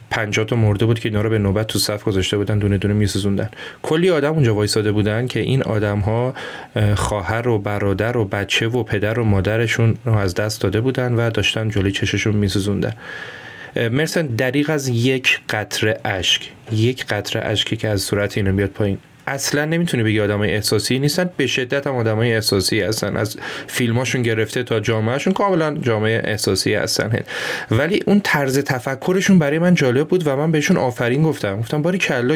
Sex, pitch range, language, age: male, 105-140 Hz, Persian, 30-49